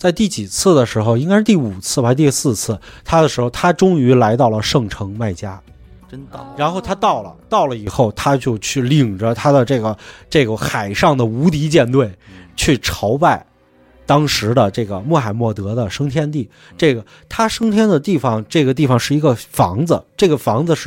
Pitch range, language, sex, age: 110-150 Hz, English, male, 30-49